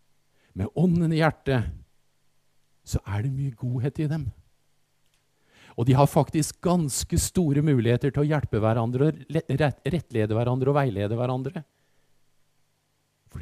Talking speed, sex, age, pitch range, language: 135 wpm, male, 50-69, 110-145 Hz, Danish